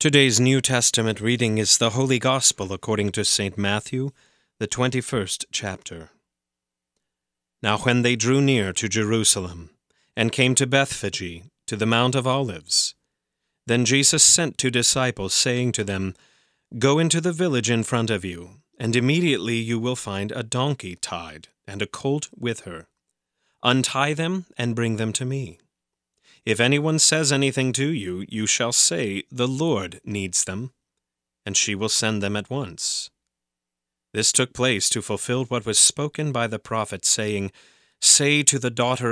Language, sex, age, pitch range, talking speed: English, male, 30-49, 100-130 Hz, 160 wpm